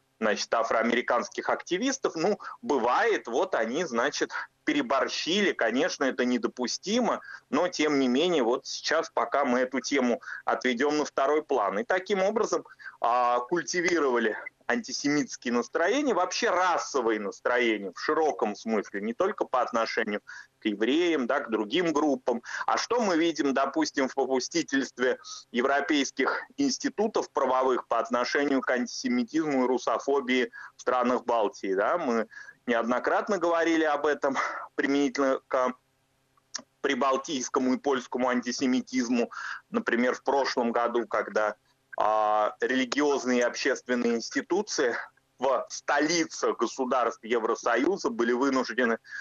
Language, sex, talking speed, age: Russian, male, 115 wpm, 30-49